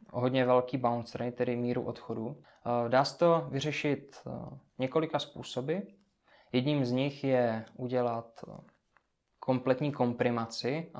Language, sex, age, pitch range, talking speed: Czech, male, 20-39, 125-145 Hz, 110 wpm